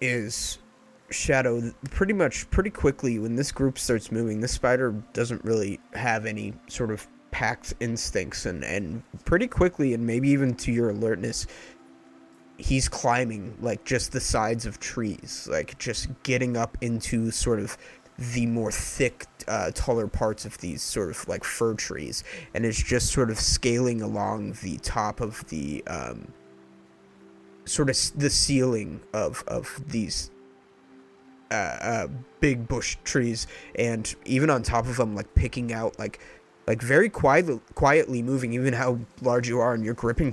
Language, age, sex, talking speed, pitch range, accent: English, 20-39, male, 160 wpm, 105-125 Hz, American